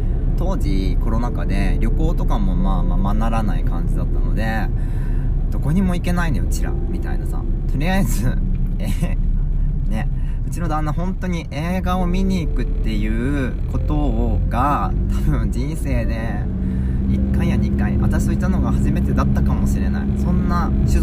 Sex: male